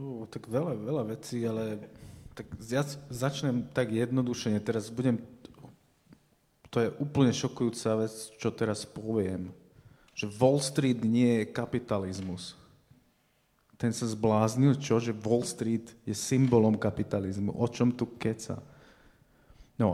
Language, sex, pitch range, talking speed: Slovak, male, 105-120 Hz, 125 wpm